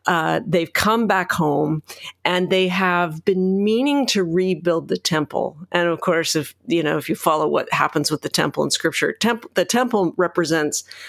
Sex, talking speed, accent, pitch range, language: female, 185 wpm, American, 165-200 Hz, English